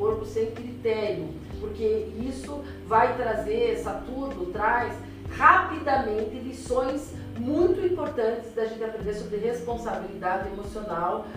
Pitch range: 225-300 Hz